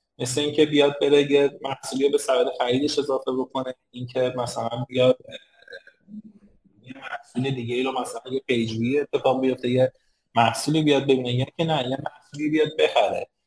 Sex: male